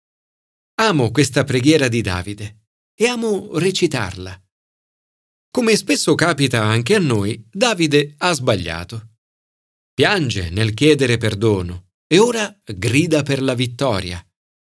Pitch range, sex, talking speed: 110-170 Hz, male, 110 wpm